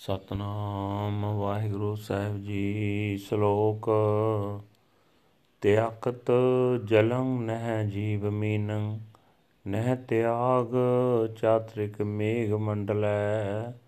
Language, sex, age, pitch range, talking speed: Punjabi, male, 40-59, 105-125 Hz, 60 wpm